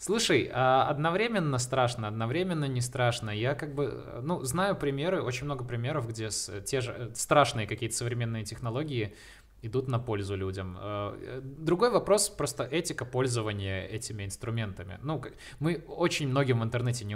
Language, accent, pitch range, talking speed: Russian, native, 105-135 Hz, 140 wpm